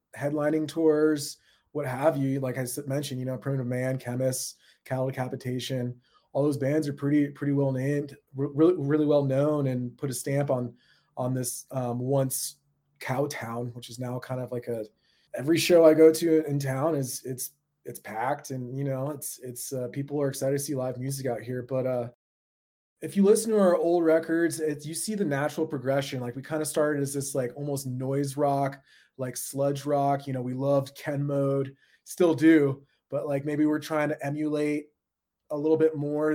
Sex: male